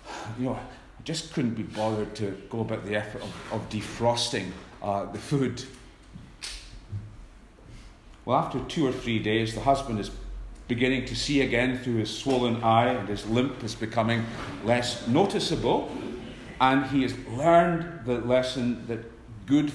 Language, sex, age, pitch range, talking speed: English, male, 40-59, 115-155 Hz, 145 wpm